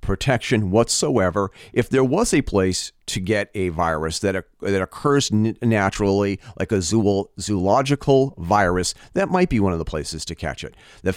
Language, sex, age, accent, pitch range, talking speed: English, male, 40-59, American, 95-130 Hz, 165 wpm